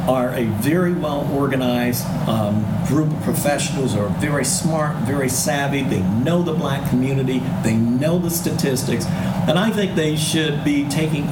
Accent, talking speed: American, 160 wpm